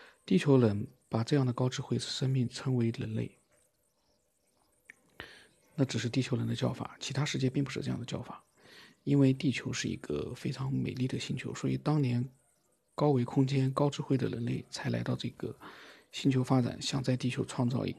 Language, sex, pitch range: Chinese, male, 120-135 Hz